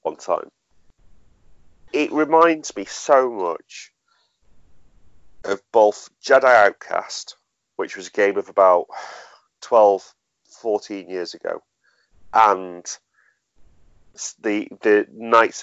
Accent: British